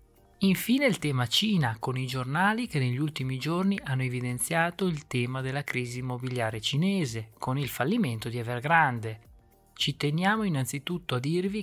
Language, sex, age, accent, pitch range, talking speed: Italian, male, 20-39, native, 125-170 Hz, 150 wpm